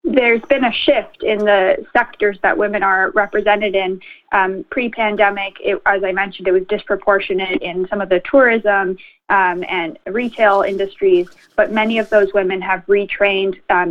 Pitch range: 185-210 Hz